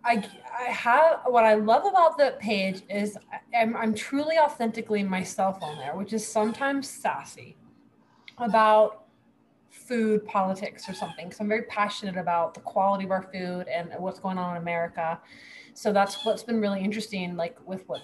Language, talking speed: English, 170 wpm